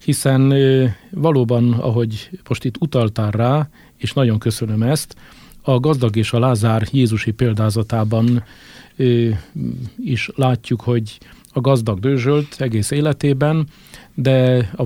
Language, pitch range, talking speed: Hungarian, 110-135 Hz, 115 wpm